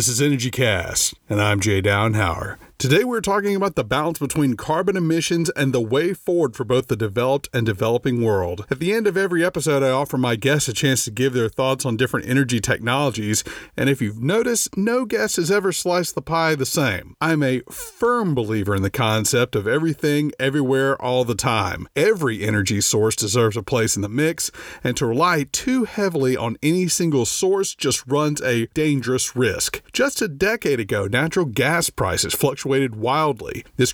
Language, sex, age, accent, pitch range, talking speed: English, male, 40-59, American, 120-170 Hz, 190 wpm